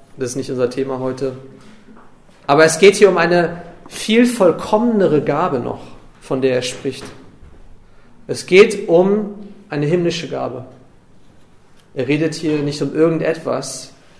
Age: 40-59